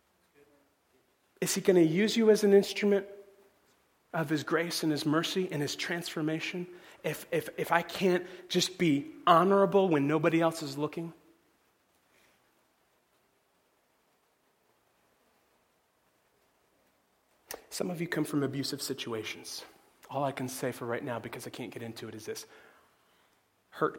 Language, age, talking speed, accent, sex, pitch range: English, 40-59, 135 wpm, American, male, 130-170 Hz